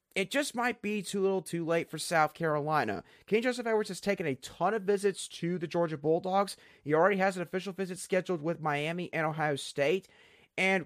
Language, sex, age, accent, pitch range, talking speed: English, male, 30-49, American, 150-205 Hz, 205 wpm